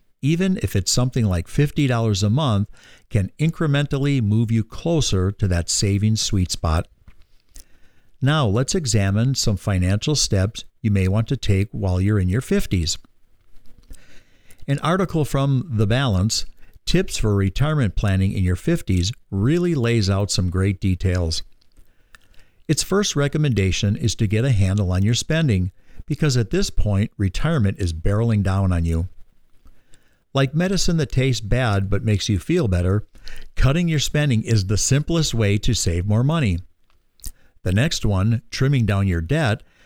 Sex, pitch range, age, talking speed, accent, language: male, 95-135 Hz, 50-69, 150 wpm, American, English